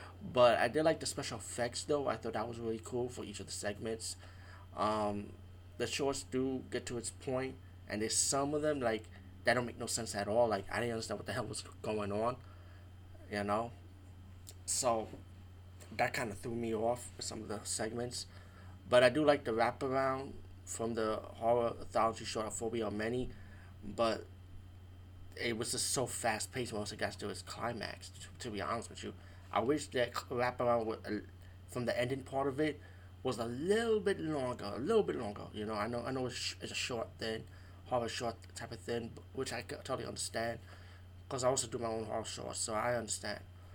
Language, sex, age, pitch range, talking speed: English, male, 20-39, 90-120 Hz, 205 wpm